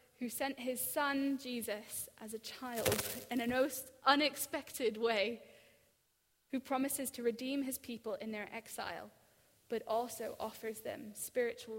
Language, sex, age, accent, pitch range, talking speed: English, female, 10-29, British, 215-255 Hz, 130 wpm